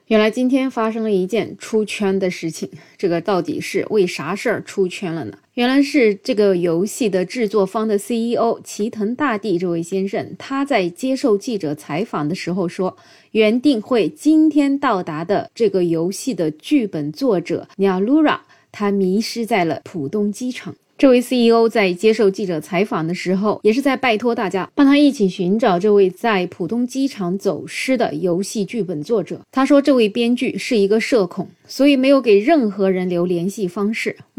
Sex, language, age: female, Chinese, 20-39